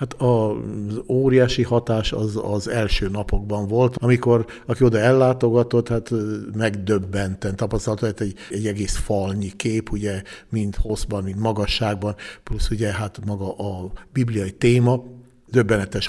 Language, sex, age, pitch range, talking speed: Hungarian, male, 60-79, 105-120 Hz, 125 wpm